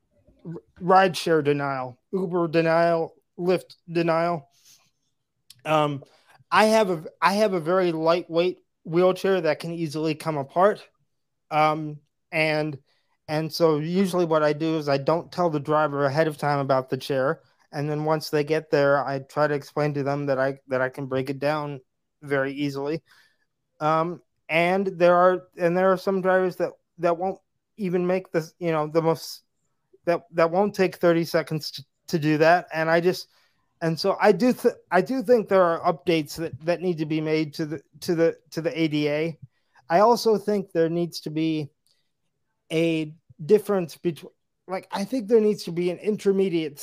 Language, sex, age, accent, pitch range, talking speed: English, male, 30-49, American, 150-180 Hz, 175 wpm